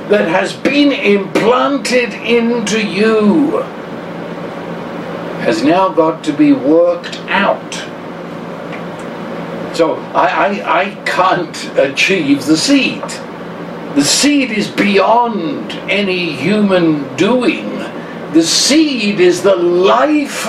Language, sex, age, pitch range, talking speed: English, male, 60-79, 190-265 Hz, 95 wpm